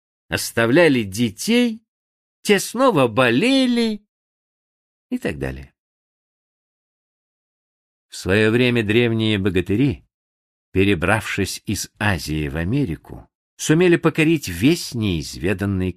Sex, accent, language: male, native, Russian